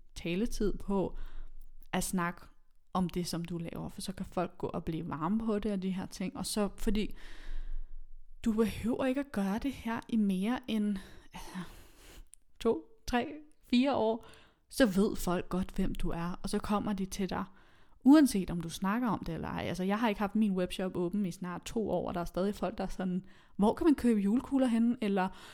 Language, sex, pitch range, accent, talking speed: Danish, female, 185-220 Hz, native, 205 wpm